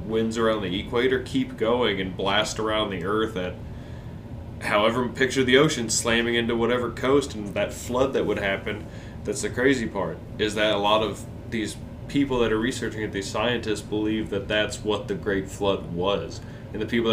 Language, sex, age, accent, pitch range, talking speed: English, male, 20-39, American, 100-115 Hz, 190 wpm